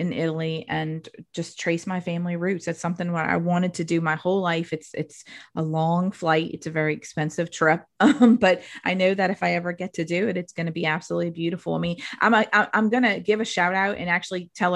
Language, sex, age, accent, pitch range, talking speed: English, female, 30-49, American, 170-200 Hz, 245 wpm